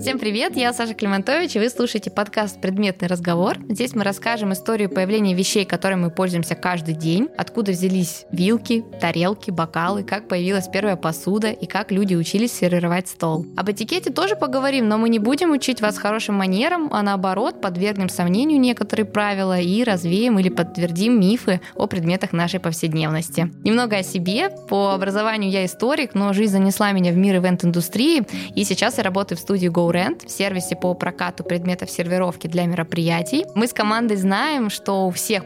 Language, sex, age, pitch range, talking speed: Russian, female, 20-39, 180-225 Hz, 170 wpm